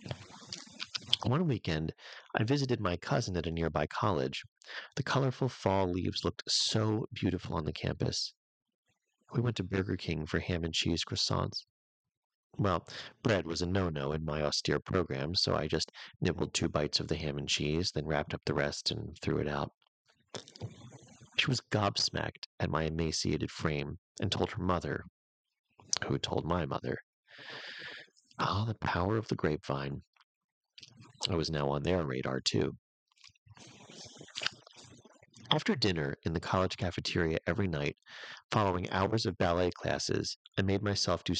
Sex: male